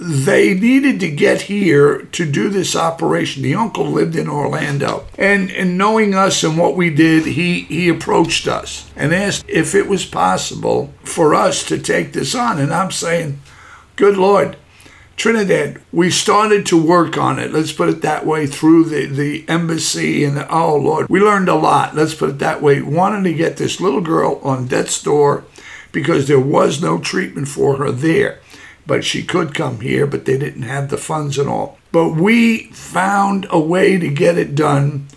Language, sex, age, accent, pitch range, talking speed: English, male, 60-79, American, 150-195 Hz, 190 wpm